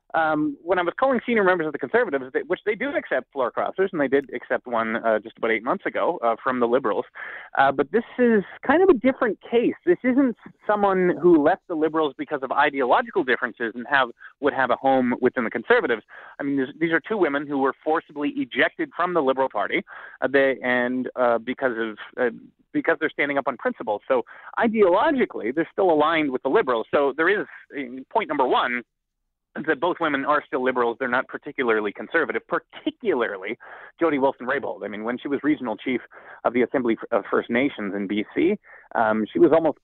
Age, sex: 30-49, male